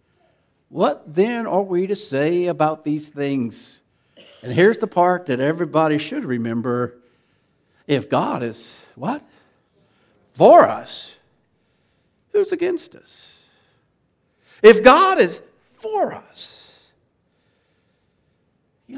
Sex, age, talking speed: male, 60-79, 100 wpm